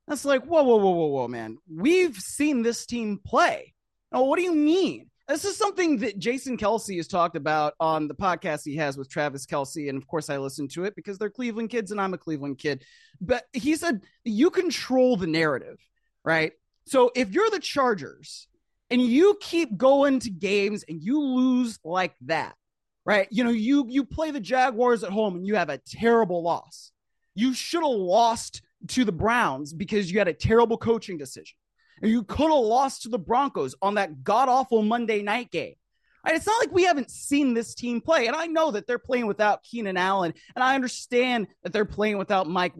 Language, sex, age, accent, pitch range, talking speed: English, male, 30-49, American, 175-275 Hz, 205 wpm